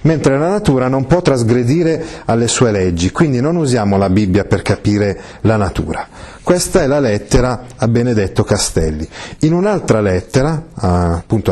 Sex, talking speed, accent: male, 150 wpm, native